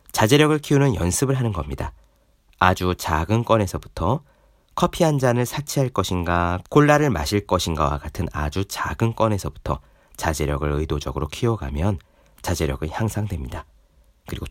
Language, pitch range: Korean, 85-130 Hz